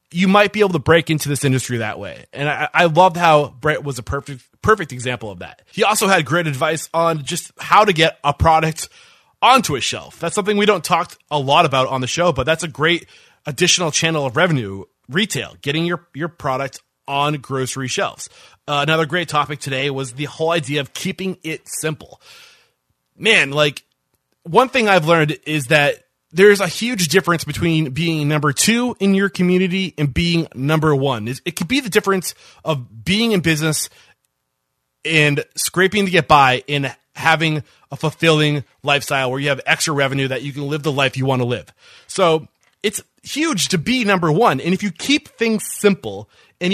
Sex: male